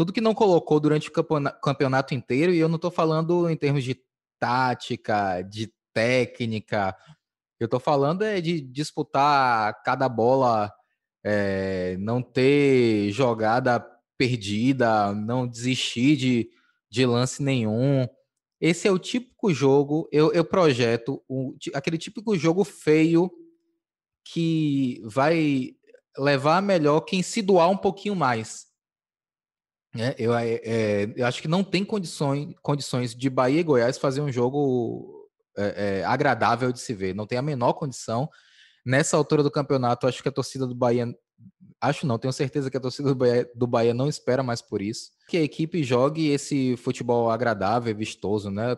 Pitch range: 120-155 Hz